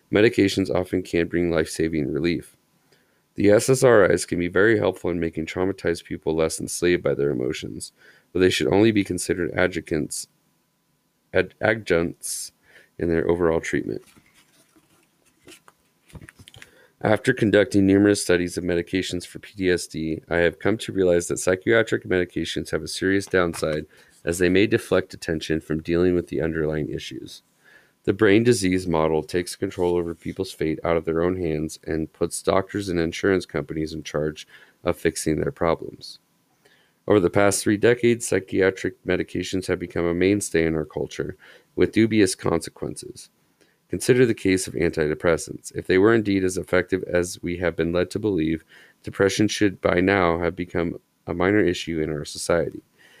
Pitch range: 80-95 Hz